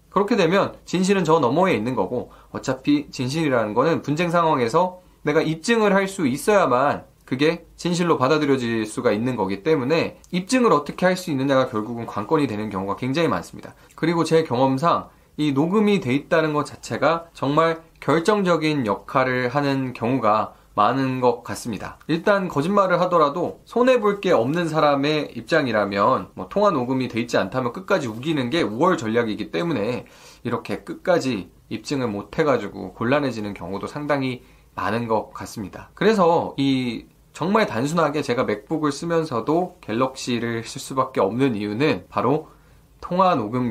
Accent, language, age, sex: native, Korean, 20-39, male